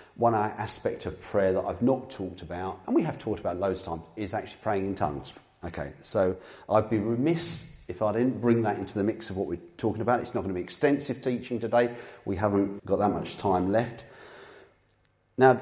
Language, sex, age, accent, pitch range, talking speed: English, male, 40-59, British, 90-115 Hz, 215 wpm